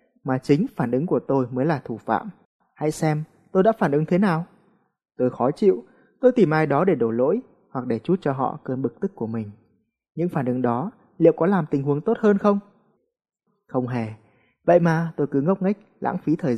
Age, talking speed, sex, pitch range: 20-39, 220 wpm, male, 130-185 Hz